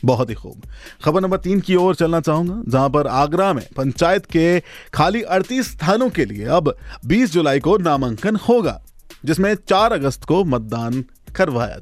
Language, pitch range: Hindi, 115-170 Hz